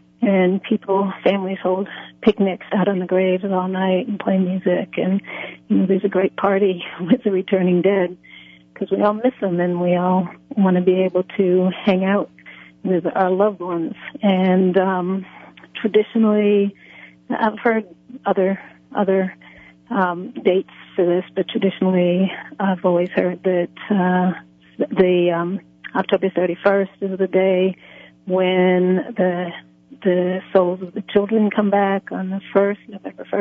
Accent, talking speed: American, 145 wpm